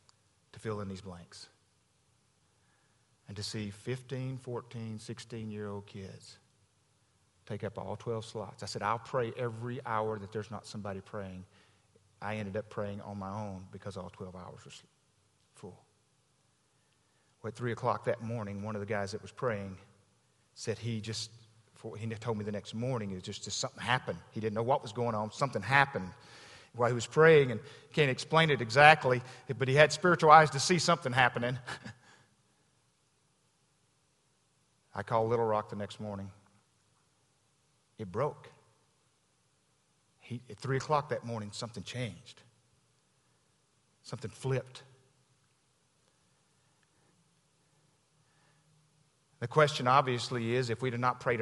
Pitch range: 105-130 Hz